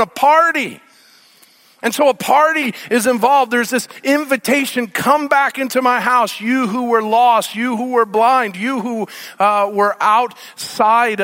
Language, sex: English, male